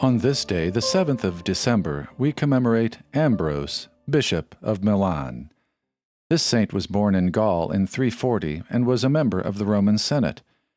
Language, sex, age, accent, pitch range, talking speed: English, male, 50-69, American, 90-120 Hz, 160 wpm